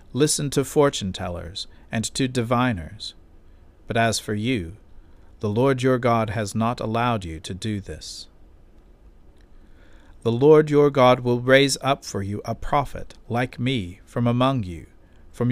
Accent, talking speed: American, 145 wpm